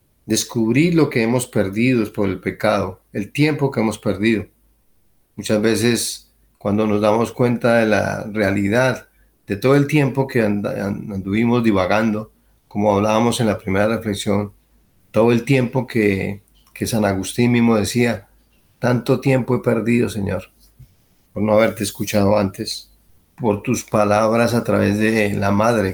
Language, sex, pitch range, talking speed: Spanish, male, 105-120 Hz, 145 wpm